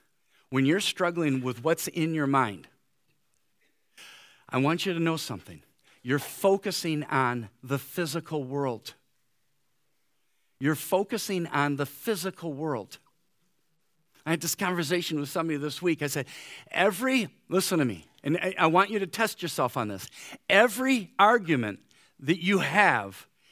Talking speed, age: 140 wpm, 50-69